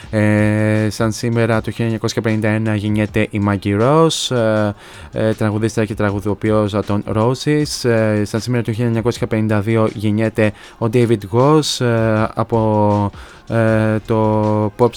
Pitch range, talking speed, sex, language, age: 105-115 Hz, 120 wpm, male, Greek, 20-39